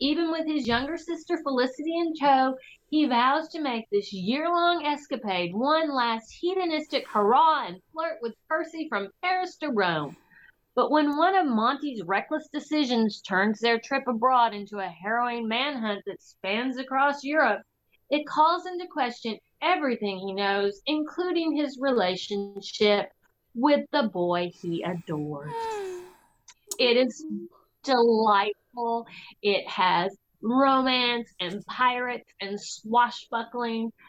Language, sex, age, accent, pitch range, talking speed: English, female, 40-59, American, 195-270 Hz, 125 wpm